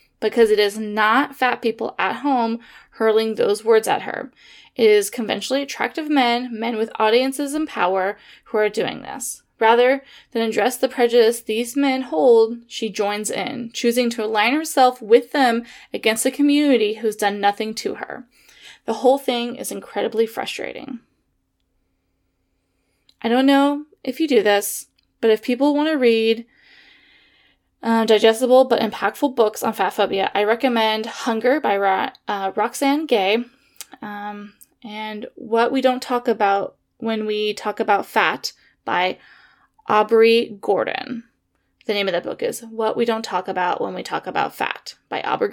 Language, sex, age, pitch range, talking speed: English, female, 20-39, 215-265 Hz, 160 wpm